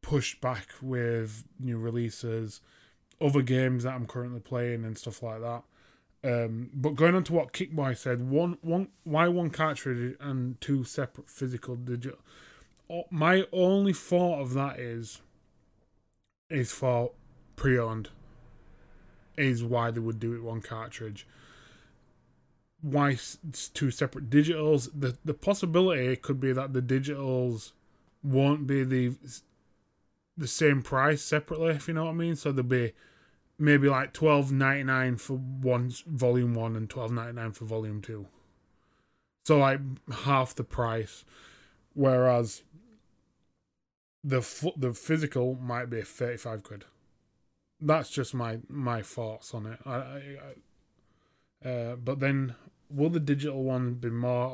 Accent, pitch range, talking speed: British, 115-145 Hz, 140 wpm